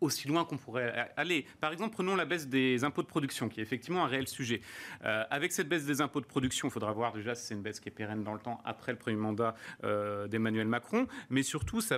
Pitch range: 125-170 Hz